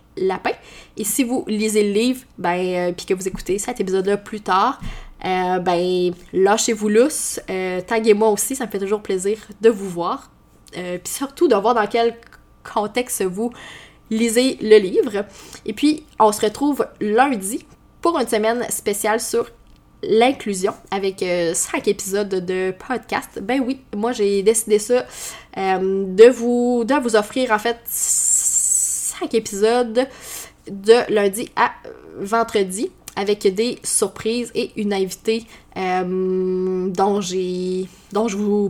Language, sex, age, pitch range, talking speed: French, female, 20-39, 195-245 Hz, 140 wpm